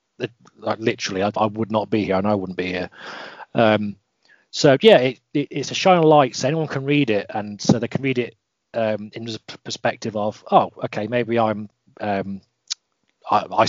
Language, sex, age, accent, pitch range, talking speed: English, male, 30-49, British, 105-125 Hz, 195 wpm